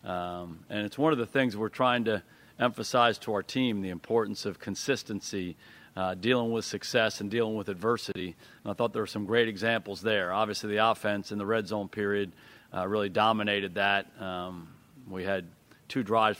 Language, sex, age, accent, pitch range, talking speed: English, male, 40-59, American, 95-110 Hz, 190 wpm